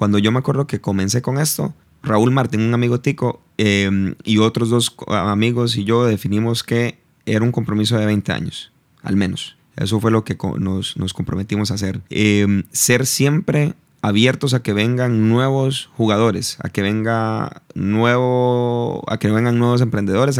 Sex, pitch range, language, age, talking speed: male, 105-130 Hz, Spanish, 30-49, 170 wpm